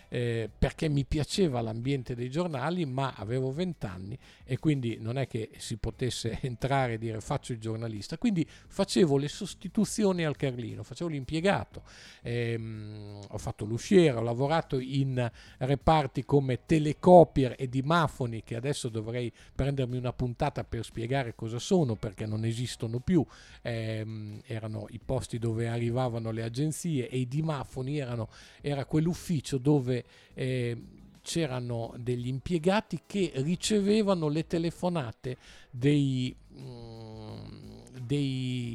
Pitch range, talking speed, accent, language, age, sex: 115-155 Hz, 125 wpm, native, Italian, 50-69, male